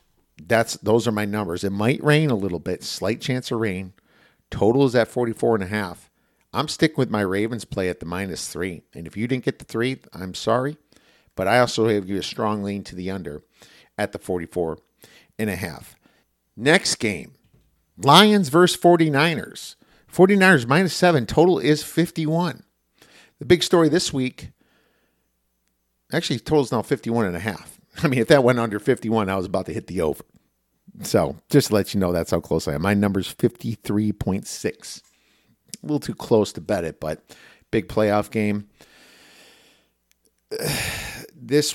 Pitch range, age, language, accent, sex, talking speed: 95-130 Hz, 50-69, English, American, male, 175 wpm